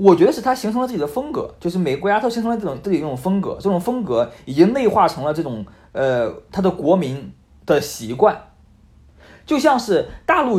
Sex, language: male, Chinese